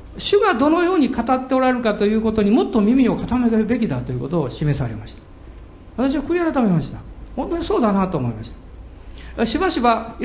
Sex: male